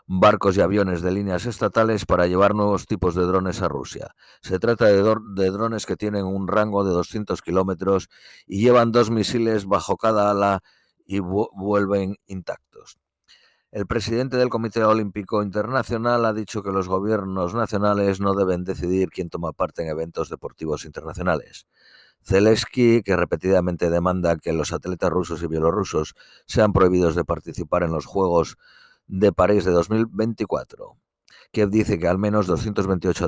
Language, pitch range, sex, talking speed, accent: Spanish, 90-105 Hz, male, 155 wpm, Spanish